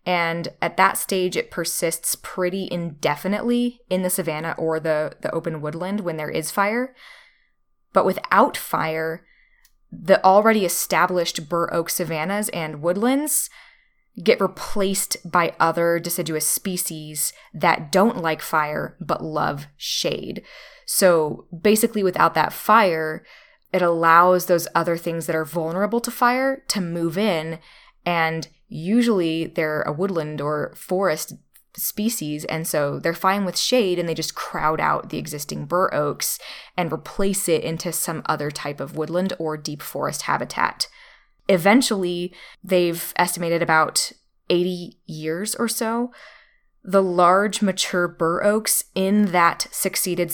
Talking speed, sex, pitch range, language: 135 wpm, female, 160-195 Hz, English